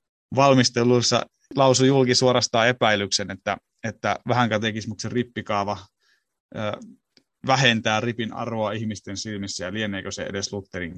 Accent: native